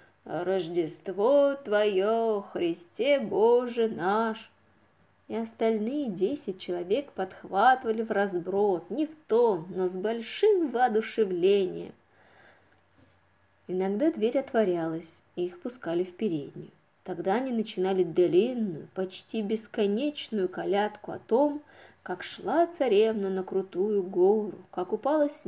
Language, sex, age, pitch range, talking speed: Russian, female, 20-39, 185-230 Hz, 105 wpm